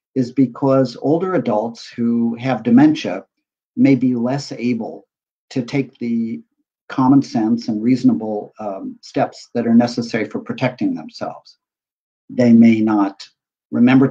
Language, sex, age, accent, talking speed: English, male, 50-69, American, 130 wpm